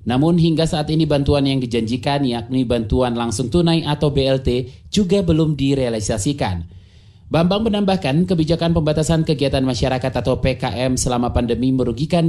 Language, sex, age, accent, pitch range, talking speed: Indonesian, male, 30-49, native, 120-165 Hz, 130 wpm